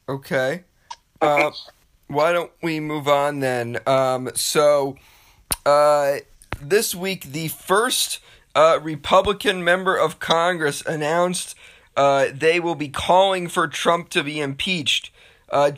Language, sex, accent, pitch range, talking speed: English, male, American, 135-170 Hz, 120 wpm